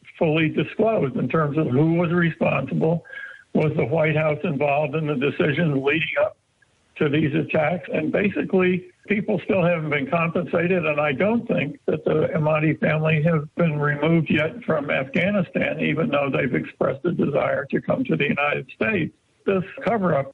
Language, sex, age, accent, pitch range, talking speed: English, male, 60-79, American, 150-175 Hz, 170 wpm